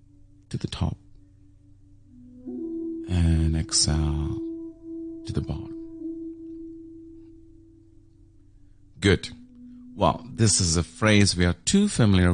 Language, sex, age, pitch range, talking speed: English, male, 40-59, 80-125 Hz, 90 wpm